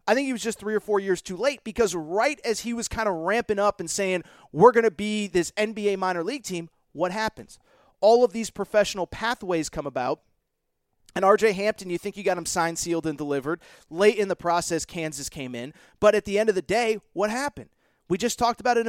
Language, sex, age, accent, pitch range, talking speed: English, male, 30-49, American, 180-235 Hz, 230 wpm